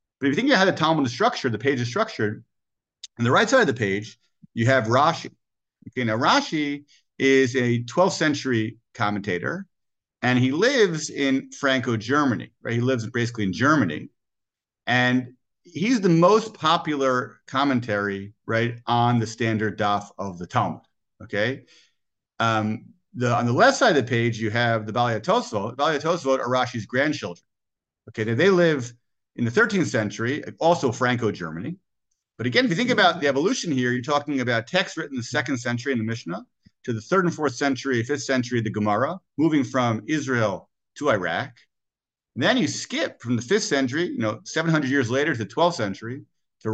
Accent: American